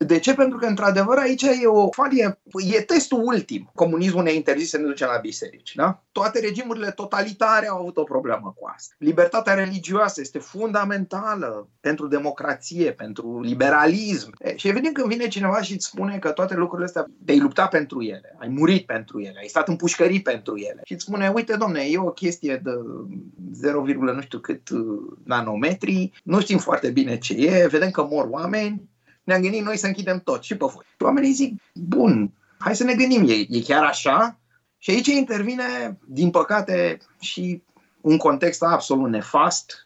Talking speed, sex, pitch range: 180 wpm, male, 135-215 Hz